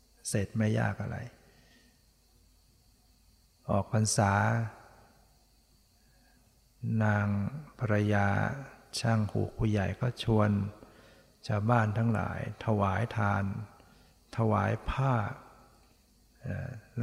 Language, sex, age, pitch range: Thai, male, 60-79, 105-120 Hz